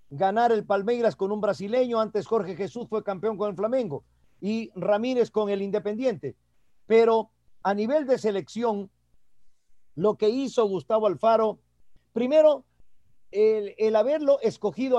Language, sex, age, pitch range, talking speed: Spanish, male, 50-69, 185-240 Hz, 135 wpm